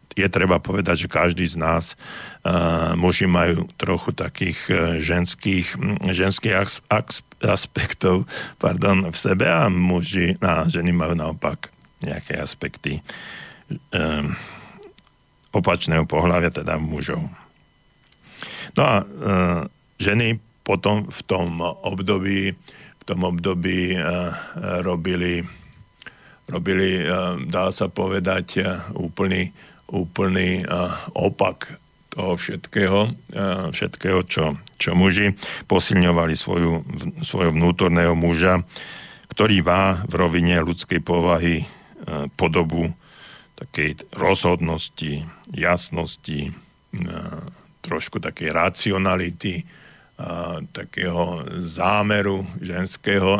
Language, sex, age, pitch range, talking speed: Slovak, male, 50-69, 85-95 Hz, 75 wpm